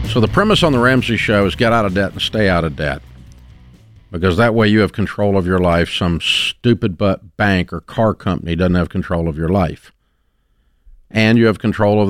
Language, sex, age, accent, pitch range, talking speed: English, male, 50-69, American, 90-115 Hz, 220 wpm